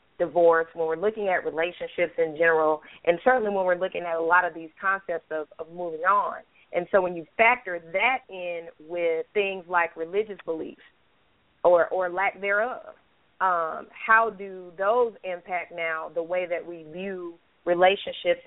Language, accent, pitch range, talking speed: English, American, 170-205 Hz, 165 wpm